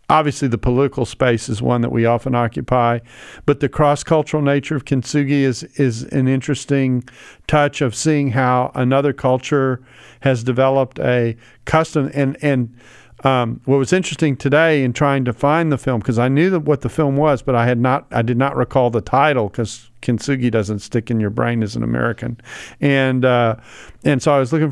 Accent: American